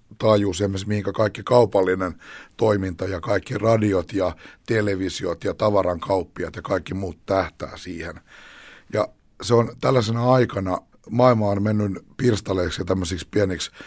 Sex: male